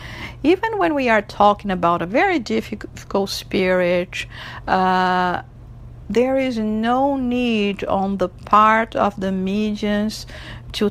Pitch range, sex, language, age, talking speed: 170-210 Hz, female, English, 50-69, 120 wpm